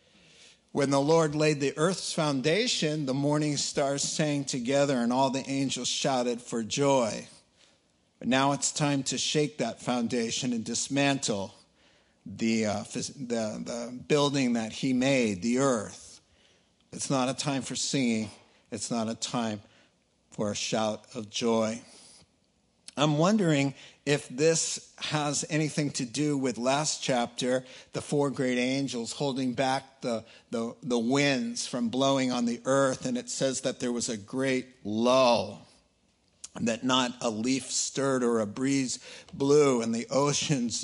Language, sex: English, male